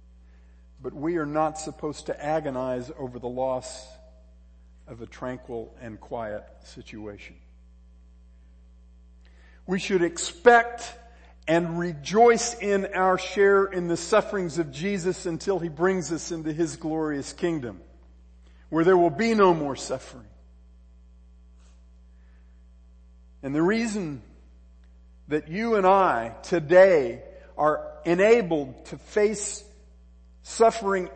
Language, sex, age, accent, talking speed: English, male, 50-69, American, 110 wpm